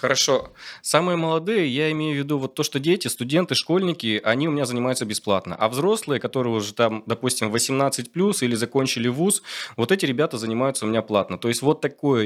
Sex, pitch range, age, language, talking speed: male, 110-140 Hz, 20-39, Russian, 190 wpm